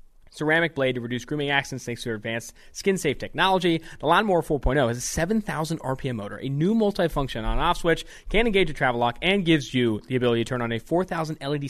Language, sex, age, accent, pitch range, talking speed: English, male, 20-39, American, 120-165 Hz, 225 wpm